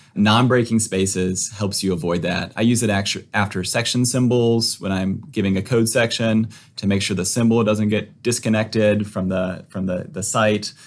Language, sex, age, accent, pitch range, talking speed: English, male, 30-49, American, 95-115 Hz, 175 wpm